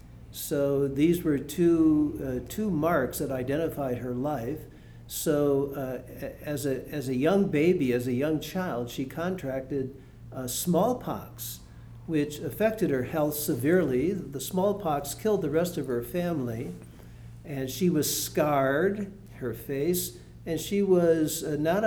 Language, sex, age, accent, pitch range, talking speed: English, male, 60-79, American, 125-175 Hz, 140 wpm